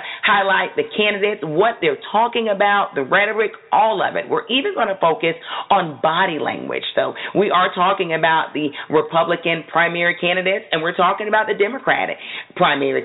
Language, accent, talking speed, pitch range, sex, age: English, American, 165 wpm, 160-205 Hz, female, 40-59